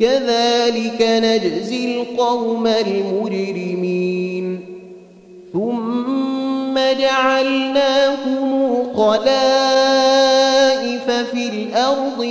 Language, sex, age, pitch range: Arabic, male, 30-49, 205-245 Hz